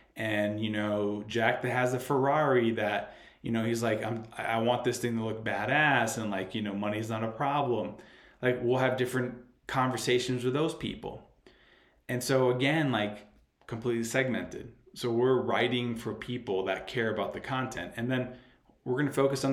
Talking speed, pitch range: 180 wpm, 110-130 Hz